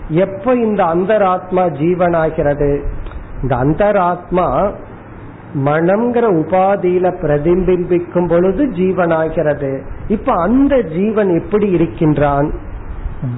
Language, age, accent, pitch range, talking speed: Tamil, 50-69, native, 135-180 Hz, 80 wpm